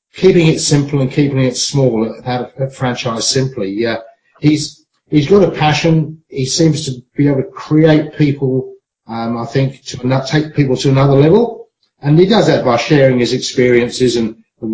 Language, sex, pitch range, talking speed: English, male, 120-150 Hz, 180 wpm